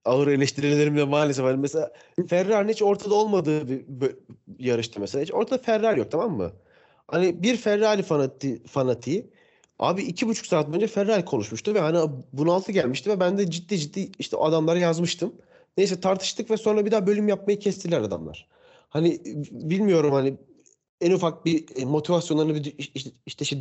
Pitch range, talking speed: 140-200 Hz, 165 wpm